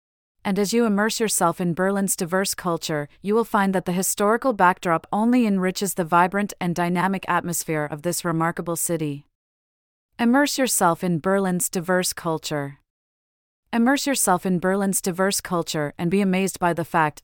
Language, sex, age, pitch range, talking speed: English, female, 30-49, 170-205 Hz, 155 wpm